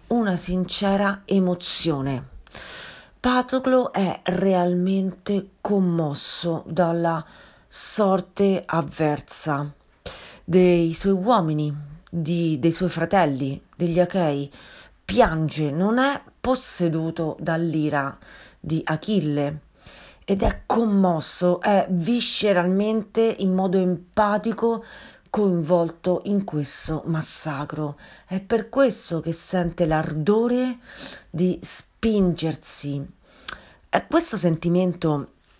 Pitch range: 160-200 Hz